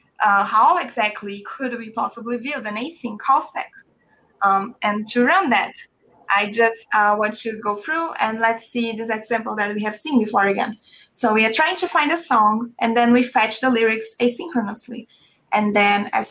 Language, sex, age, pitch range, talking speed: English, female, 20-39, 210-245 Hz, 190 wpm